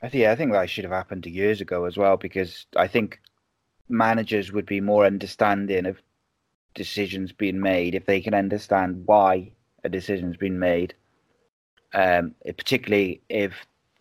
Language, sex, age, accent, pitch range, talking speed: English, male, 30-49, British, 95-110 Hz, 165 wpm